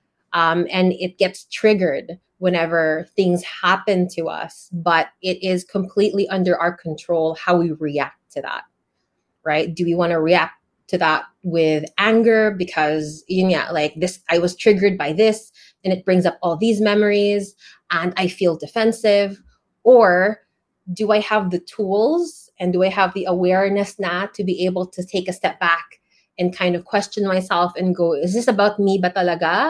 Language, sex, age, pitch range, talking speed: English, female, 20-39, 170-205 Hz, 175 wpm